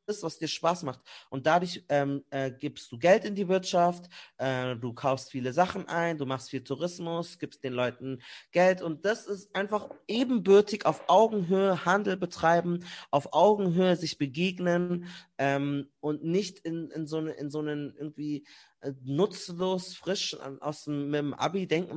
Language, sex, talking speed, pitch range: German, male, 165 wpm, 135-185 Hz